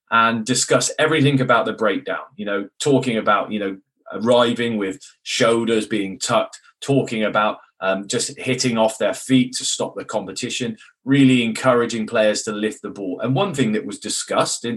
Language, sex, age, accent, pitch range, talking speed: English, male, 20-39, British, 105-130 Hz, 170 wpm